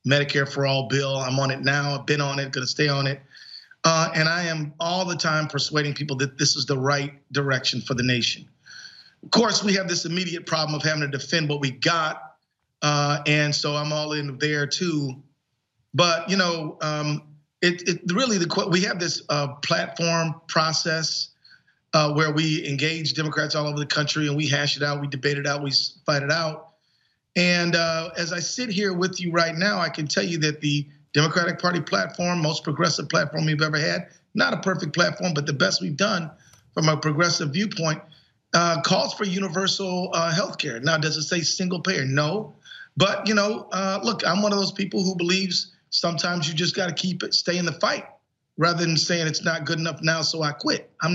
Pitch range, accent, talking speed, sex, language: 145-175 Hz, American, 210 wpm, male, English